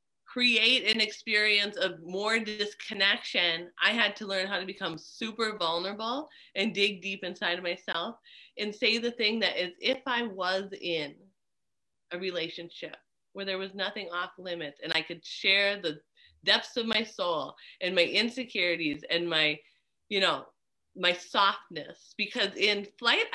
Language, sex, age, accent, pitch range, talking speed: English, female, 30-49, American, 175-225 Hz, 155 wpm